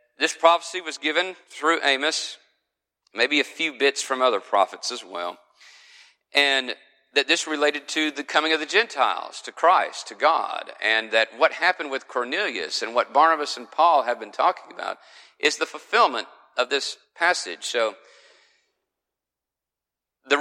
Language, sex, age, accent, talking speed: English, male, 50-69, American, 155 wpm